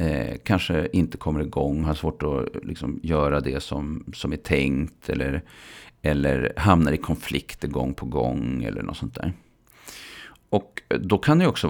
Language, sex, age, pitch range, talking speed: Swedish, male, 40-59, 70-95 Hz, 160 wpm